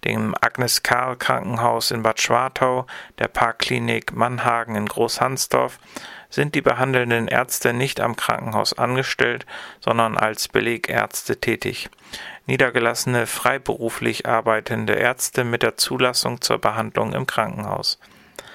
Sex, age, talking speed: male, 40-59, 105 wpm